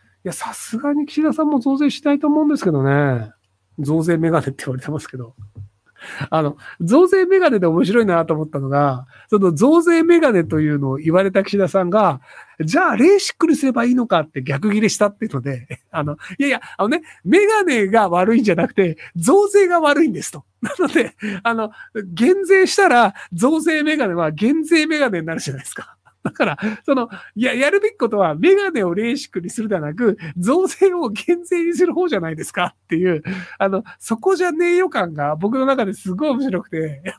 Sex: male